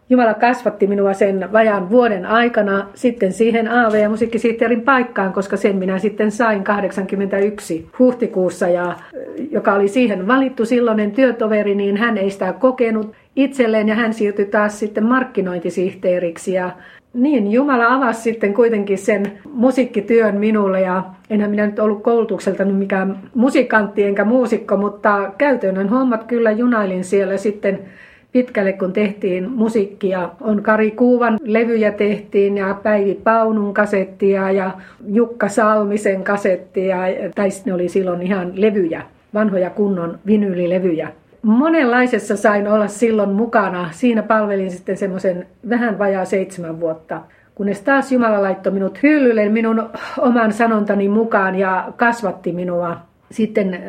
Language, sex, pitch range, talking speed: Finnish, female, 195-230 Hz, 130 wpm